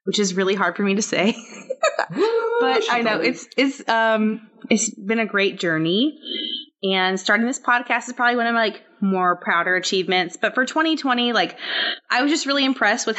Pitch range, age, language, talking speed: 185-255 Hz, 20-39, English, 190 wpm